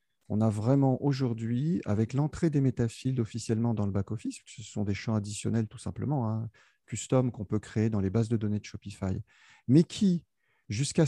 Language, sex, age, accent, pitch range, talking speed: French, male, 40-59, French, 110-140 Hz, 185 wpm